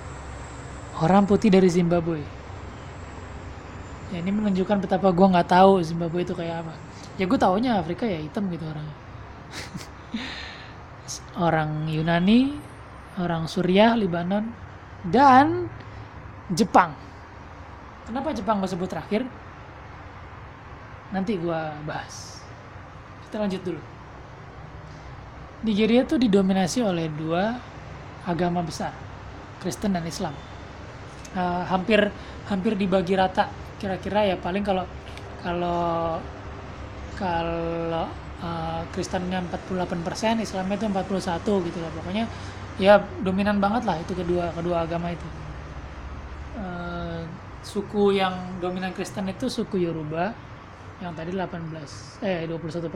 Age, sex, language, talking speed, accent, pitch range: 20-39, male, Indonesian, 105 wpm, native, 145-195 Hz